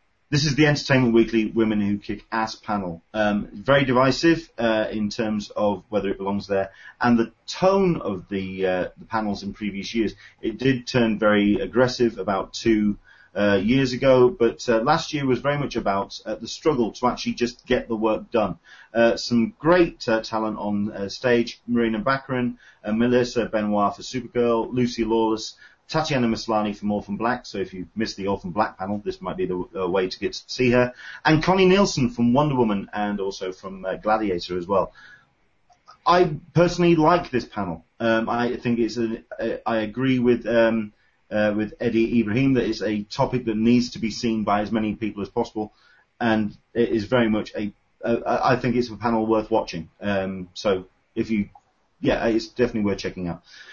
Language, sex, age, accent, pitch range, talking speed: English, male, 30-49, British, 105-125 Hz, 190 wpm